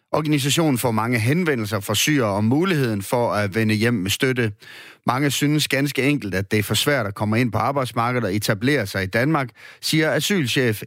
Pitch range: 110-155 Hz